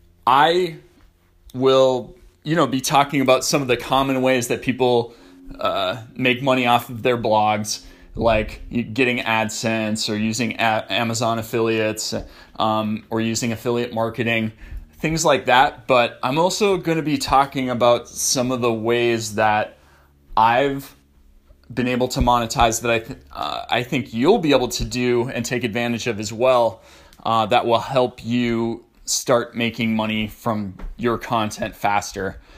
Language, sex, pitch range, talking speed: English, male, 105-125 Hz, 155 wpm